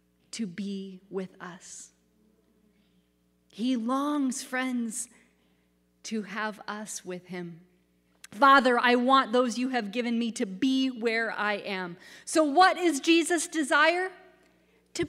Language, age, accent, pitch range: English, 30-49, American, 195-270 Hz